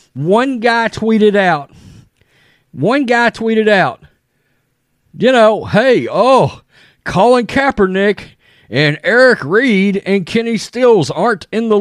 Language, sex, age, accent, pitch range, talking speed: English, male, 40-59, American, 135-220 Hz, 115 wpm